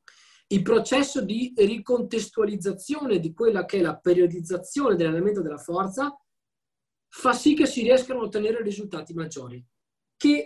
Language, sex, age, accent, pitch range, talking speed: Italian, male, 20-39, native, 170-275 Hz, 130 wpm